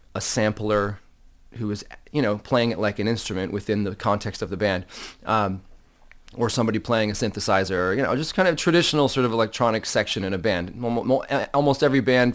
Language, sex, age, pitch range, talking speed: English, male, 30-49, 100-125 Hz, 195 wpm